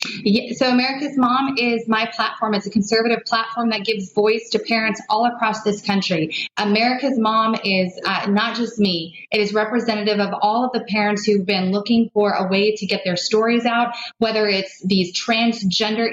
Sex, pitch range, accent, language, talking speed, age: female, 200-230 Hz, American, English, 180 wpm, 30-49